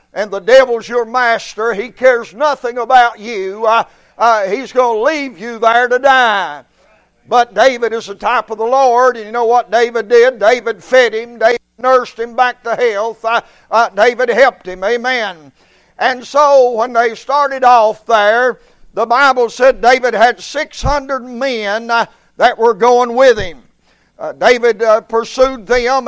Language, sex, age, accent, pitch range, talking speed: English, male, 60-79, American, 225-255 Hz, 170 wpm